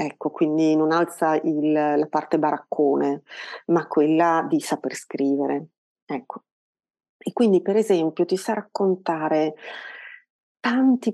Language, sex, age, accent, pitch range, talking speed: Italian, female, 40-59, native, 165-205 Hz, 115 wpm